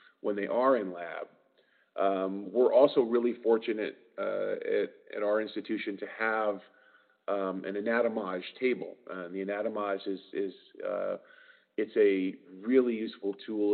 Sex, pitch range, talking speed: male, 100-130 Hz, 145 wpm